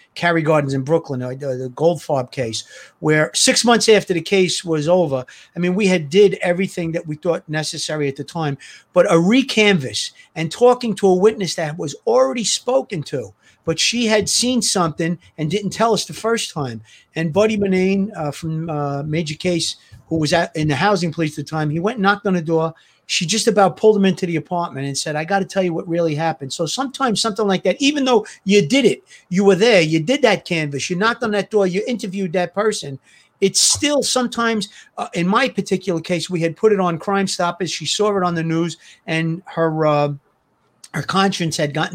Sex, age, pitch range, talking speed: male, 40-59, 160-200 Hz, 215 wpm